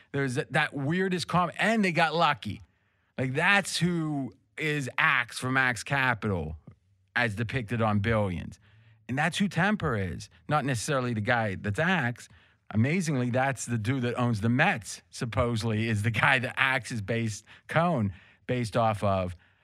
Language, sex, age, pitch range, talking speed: English, male, 40-59, 110-150 Hz, 155 wpm